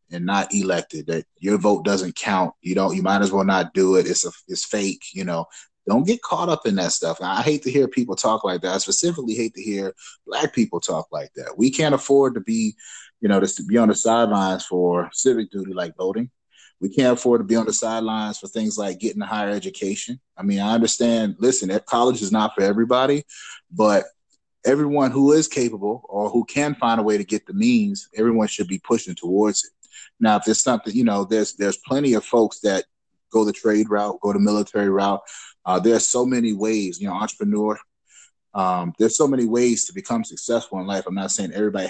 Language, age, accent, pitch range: English, 30-49, American, 100-130 Hz